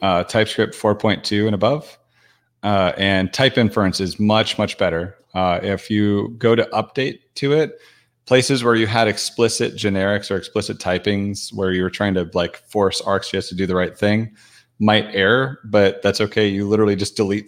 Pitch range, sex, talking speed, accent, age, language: 95-110 Hz, male, 180 wpm, American, 30-49, English